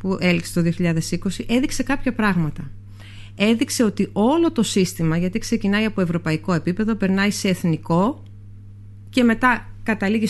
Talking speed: 135 wpm